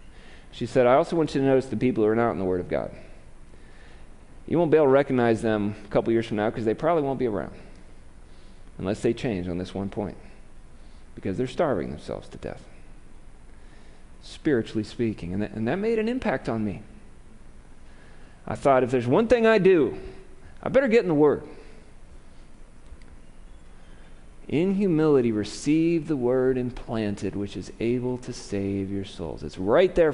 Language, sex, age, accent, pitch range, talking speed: English, male, 40-59, American, 95-145 Hz, 175 wpm